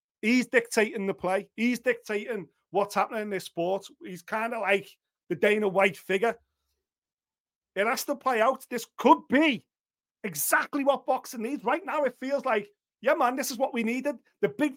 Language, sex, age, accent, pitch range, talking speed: English, male, 40-59, British, 200-255 Hz, 185 wpm